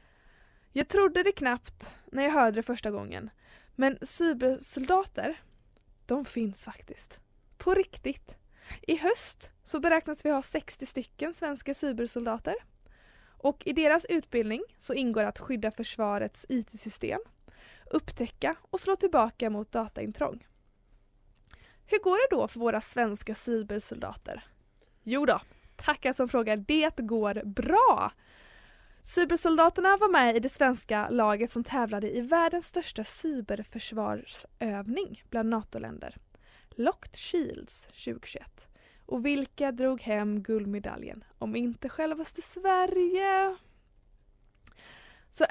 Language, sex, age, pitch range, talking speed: Swedish, female, 20-39, 225-330 Hz, 115 wpm